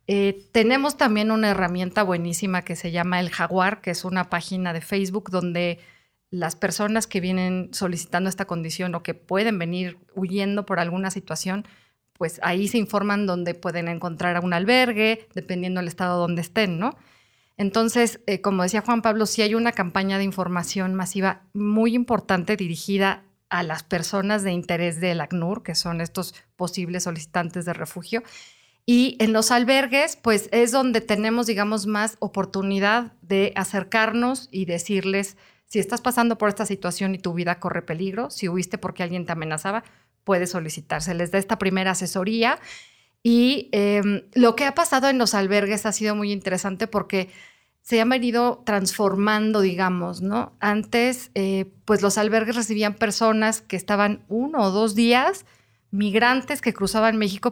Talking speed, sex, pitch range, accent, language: 160 wpm, female, 180-220 Hz, Mexican, Spanish